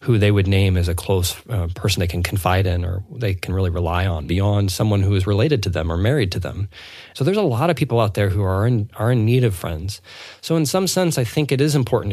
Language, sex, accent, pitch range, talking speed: English, male, American, 100-130 Hz, 270 wpm